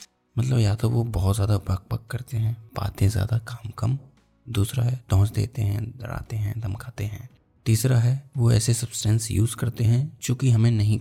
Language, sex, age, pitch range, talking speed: Hindi, male, 20-39, 105-125 Hz, 190 wpm